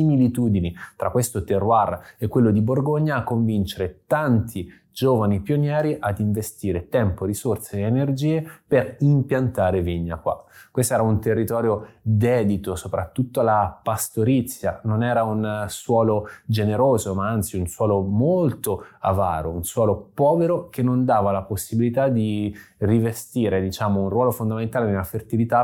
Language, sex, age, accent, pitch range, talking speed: Italian, male, 20-39, native, 100-120 Hz, 135 wpm